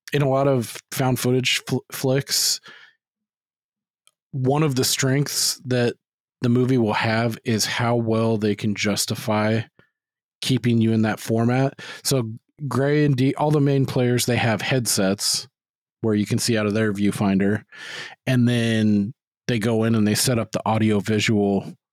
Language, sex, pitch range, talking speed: English, male, 105-130 Hz, 155 wpm